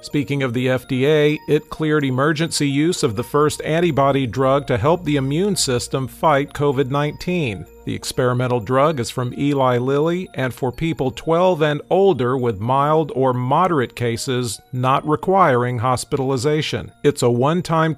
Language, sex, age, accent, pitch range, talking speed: English, male, 40-59, American, 125-155 Hz, 155 wpm